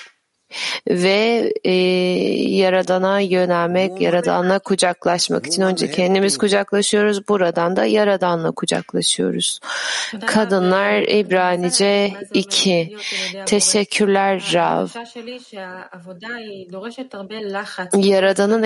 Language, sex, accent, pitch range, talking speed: Turkish, female, native, 180-210 Hz, 65 wpm